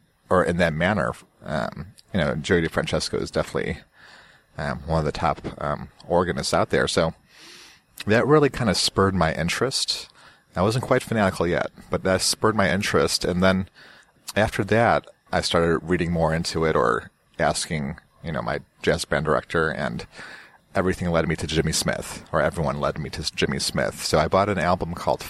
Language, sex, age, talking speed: English, male, 30-49, 180 wpm